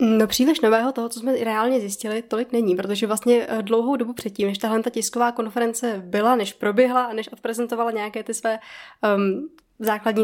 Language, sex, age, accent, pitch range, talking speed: Czech, female, 20-39, native, 215-245 Hz, 180 wpm